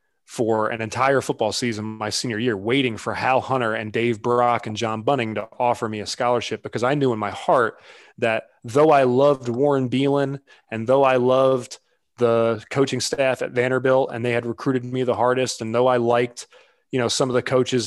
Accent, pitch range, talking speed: American, 110-125 Hz, 205 wpm